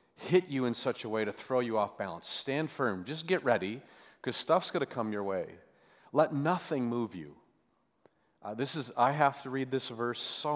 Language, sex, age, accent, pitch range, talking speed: English, male, 40-59, American, 100-120 Hz, 210 wpm